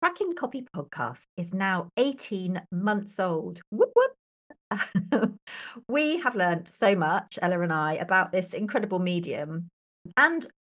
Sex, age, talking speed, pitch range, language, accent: female, 40-59, 130 wpm, 175-225 Hz, English, British